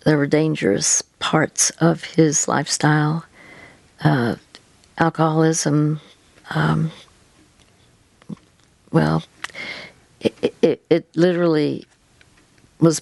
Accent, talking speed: American, 75 wpm